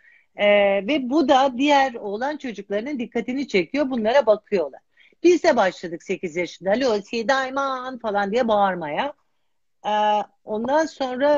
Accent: native